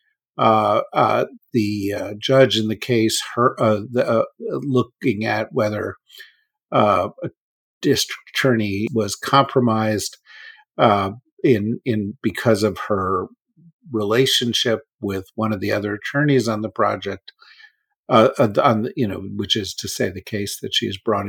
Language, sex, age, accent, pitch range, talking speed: English, male, 50-69, American, 105-140 Hz, 145 wpm